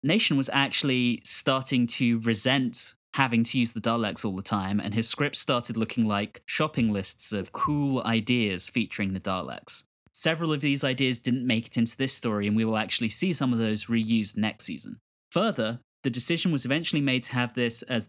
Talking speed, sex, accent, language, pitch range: 195 wpm, male, British, English, 110-135 Hz